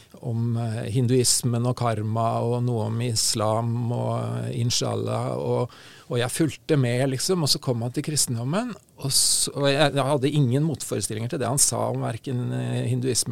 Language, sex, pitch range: English, male, 120-155 Hz